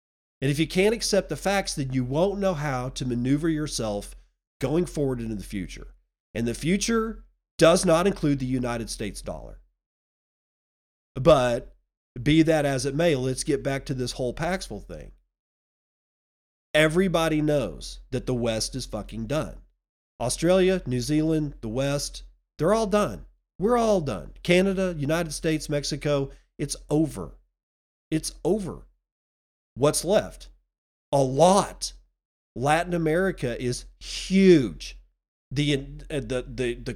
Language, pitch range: English, 120-175 Hz